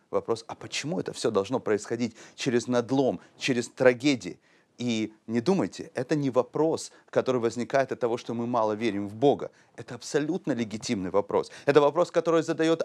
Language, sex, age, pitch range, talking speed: Russian, male, 30-49, 120-160 Hz, 165 wpm